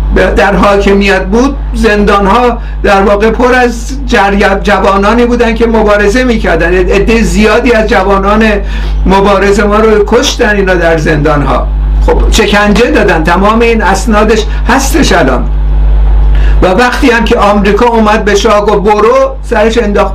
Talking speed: 140 wpm